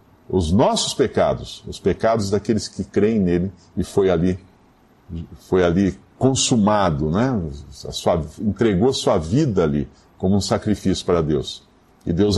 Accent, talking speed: Brazilian, 145 wpm